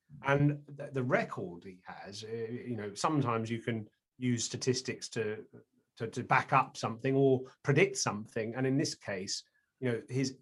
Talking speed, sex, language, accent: 160 wpm, male, English, British